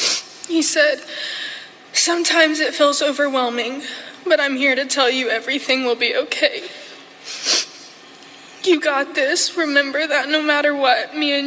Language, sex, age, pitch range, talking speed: English, female, 20-39, 250-295 Hz, 135 wpm